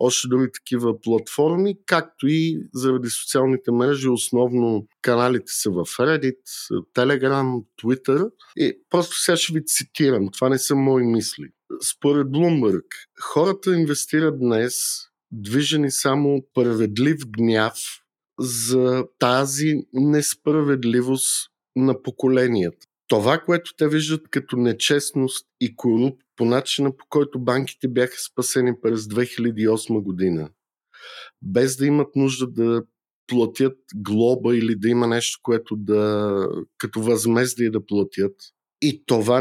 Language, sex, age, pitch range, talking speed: Bulgarian, male, 50-69, 115-135 Hz, 120 wpm